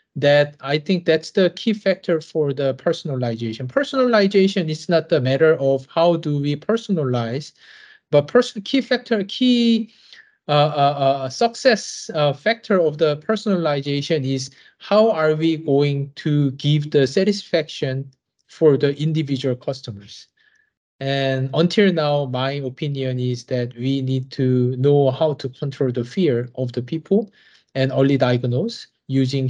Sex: male